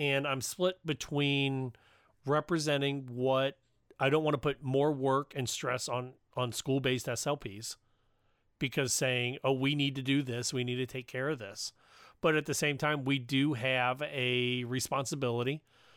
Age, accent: 40-59, American